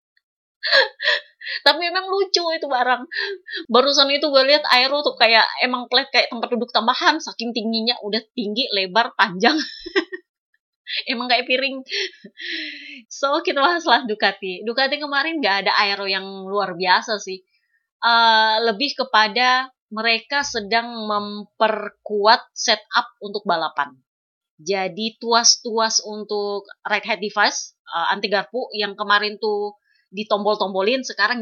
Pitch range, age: 200-255 Hz, 20-39